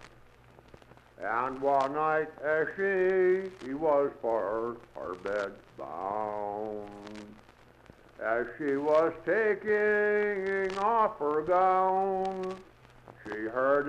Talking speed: 90 wpm